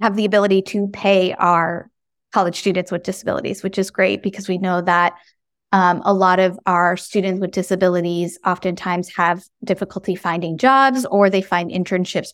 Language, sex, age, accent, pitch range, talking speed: English, female, 20-39, American, 180-215 Hz, 165 wpm